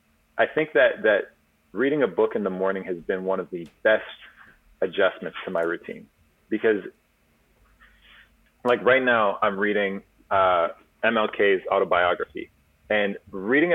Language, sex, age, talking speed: English, male, 30-49, 135 wpm